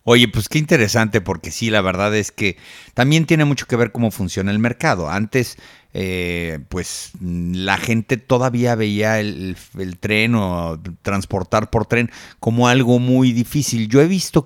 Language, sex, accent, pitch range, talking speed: Spanish, male, Mexican, 100-125 Hz, 170 wpm